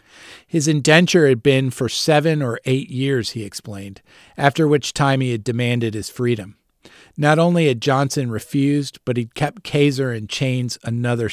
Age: 40-59